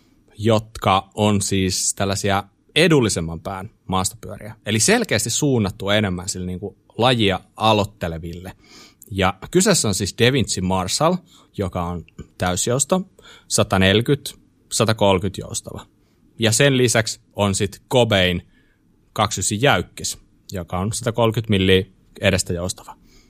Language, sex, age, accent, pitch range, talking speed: Finnish, male, 30-49, native, 95-120 Hz, 105 wpm